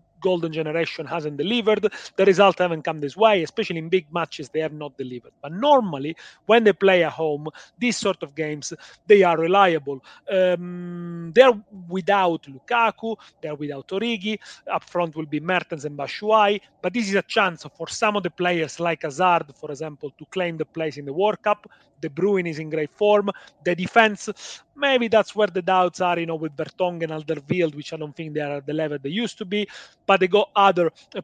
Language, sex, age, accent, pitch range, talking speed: English, male, 30-49, Italian, 160-195 Hz, 205 wpm